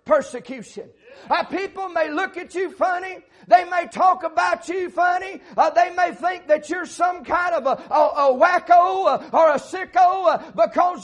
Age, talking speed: 50-69, 180 wpm